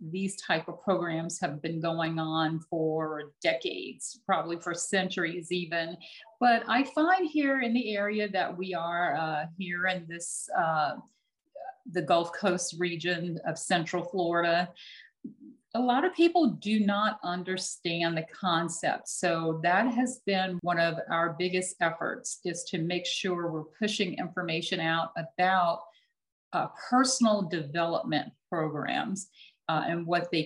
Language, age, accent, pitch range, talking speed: English, 50-69, American, 170-220 Hz, 140 wpm